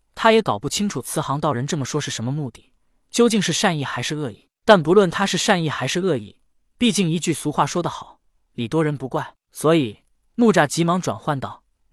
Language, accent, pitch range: Chinese, native, 135-195 Hz